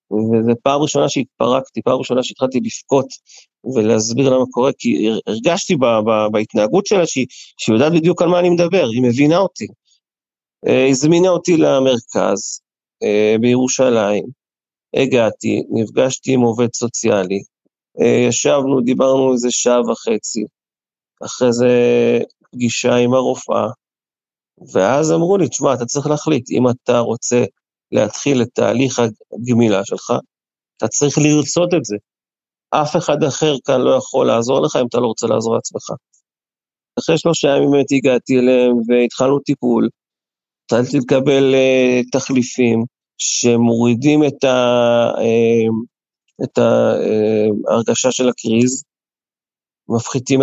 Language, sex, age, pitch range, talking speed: Hebrew, male, 30-49, 120-140 Hz, 120 wpm